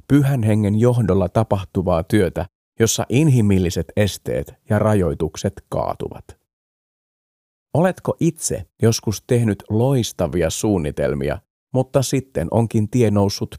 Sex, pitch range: male, 95-115 Hz